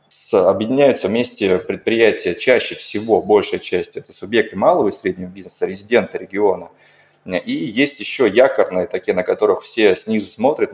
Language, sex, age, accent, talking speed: Russian, male, 20-39, native, 140 wpm